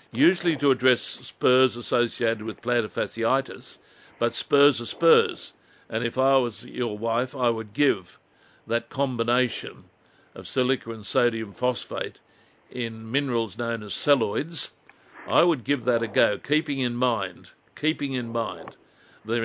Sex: male